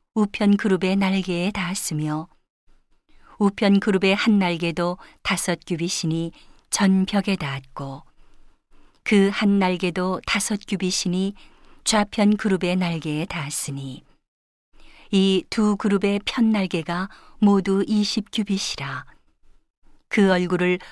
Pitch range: 175-205 Hz